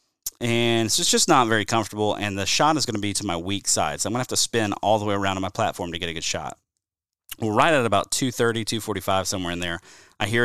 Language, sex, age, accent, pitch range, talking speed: English, male, 30-49, American, 95-115 Hz, 270 wpm